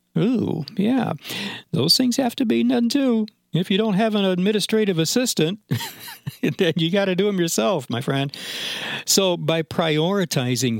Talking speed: 155 wpm